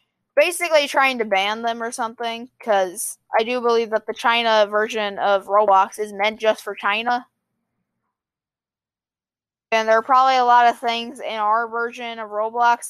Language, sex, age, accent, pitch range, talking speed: English, female, 20-39, American, 215-250 Hz, 165 wpm